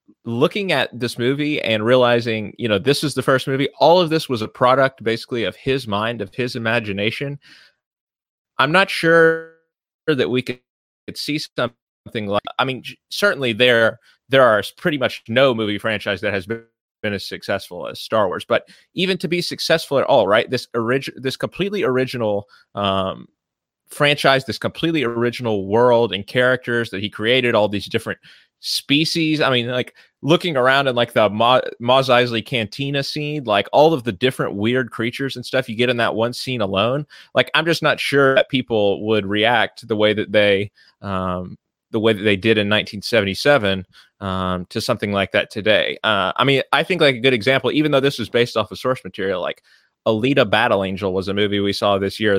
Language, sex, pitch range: English, male, 105-135 Hz